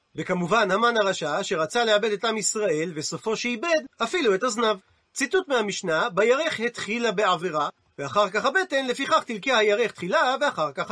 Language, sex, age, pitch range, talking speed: Hebrew, male, 40-59, 205-265 Hz, 150 wpm